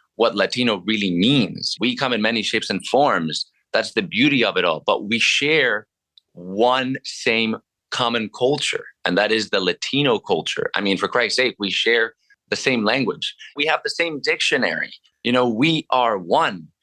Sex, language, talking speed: male, English, 180 wpm